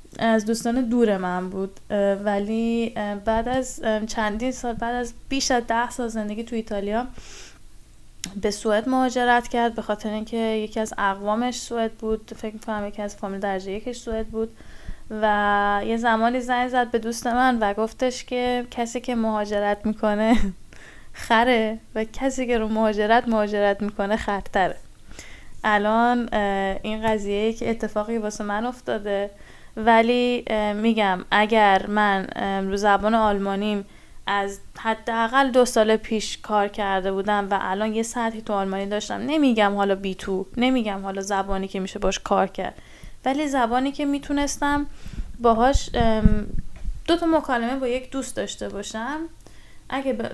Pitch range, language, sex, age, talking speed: 205-240 Hz, Persian, female, 10-29, 145 wpm